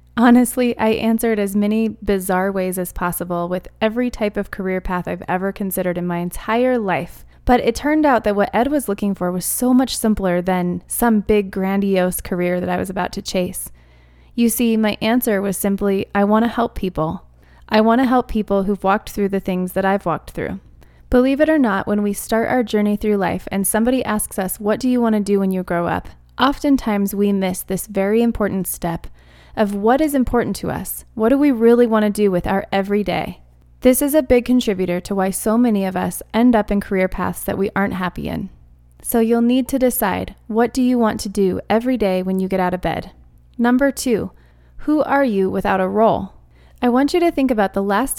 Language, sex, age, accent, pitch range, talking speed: English, female, 20-39, American, 190-235 Hz, 215 wpm